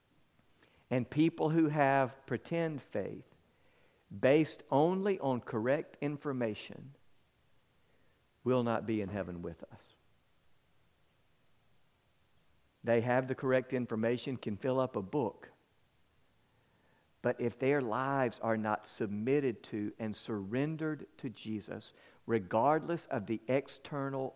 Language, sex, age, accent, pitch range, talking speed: English, male, 50-69, American, 110-145 Hz, 110 wpm